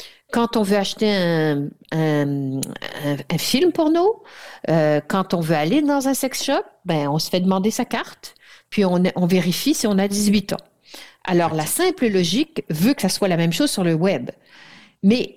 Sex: female